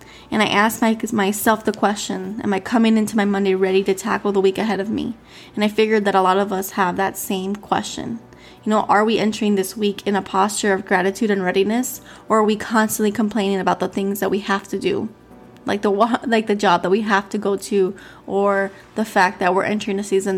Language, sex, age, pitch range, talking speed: English, female, 20-39, 195-225 Hz, 230 wpm